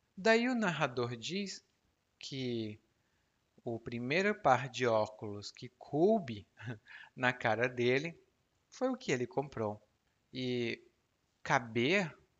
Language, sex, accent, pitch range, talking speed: Portuguese, male, Brazilian, 110-145 Hz, 105 wpm